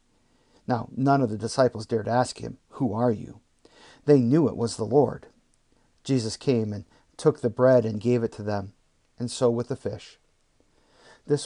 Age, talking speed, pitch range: 50-69, 180 wpm, 115-140 Hz